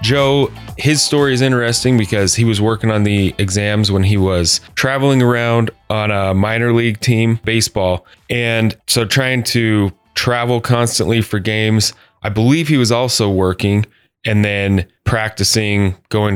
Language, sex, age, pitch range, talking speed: English, male, 10-29, 95-115 Hz, 150 wpm